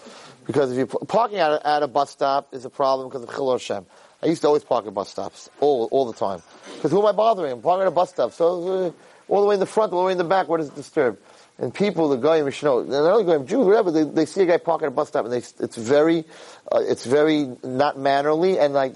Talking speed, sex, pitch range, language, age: 270 wpm, male, 140-185 Hz, English, 30-49